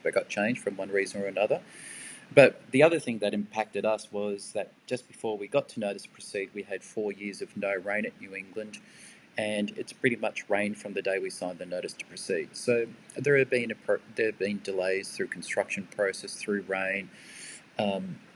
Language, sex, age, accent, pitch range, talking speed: English, male, 30-49, Australian, 100-135 Hz, 210 wpm